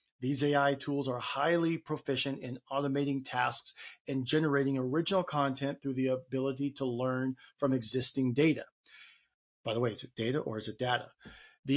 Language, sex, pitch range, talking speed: English, male, 130-150 Hz, 165 wpm